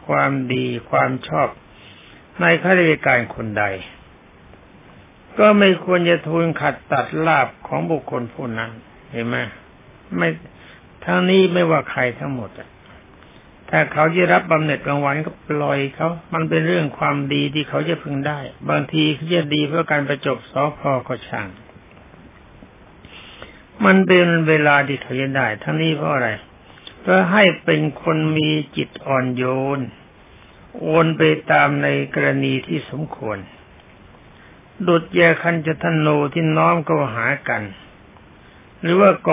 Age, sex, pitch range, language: 60-79, male, 115-160 Hz, Thai